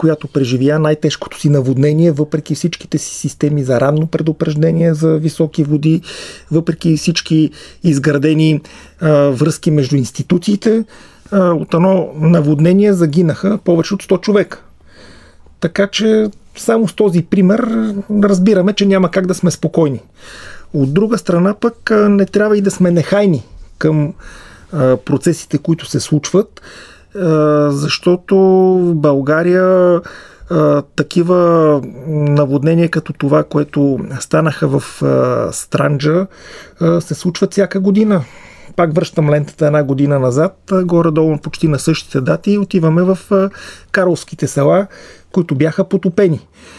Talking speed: 115 wpm